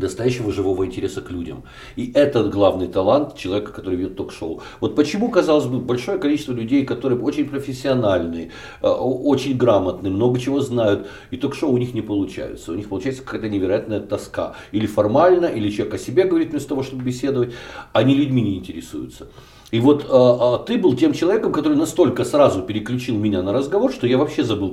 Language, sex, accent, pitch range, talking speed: Ukrainian, male, native, 105-150 Hz, 180 wpm